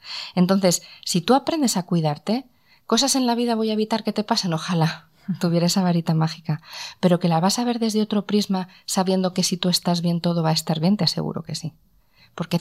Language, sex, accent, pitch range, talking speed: Spanish, female, Spanish, 170-230 Hz, 220 wpm